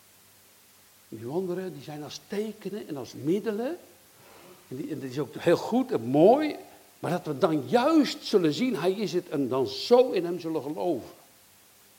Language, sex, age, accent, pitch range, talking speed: Dutch, male, 60-79, Dutch, 120-195 Hz, 170 wpm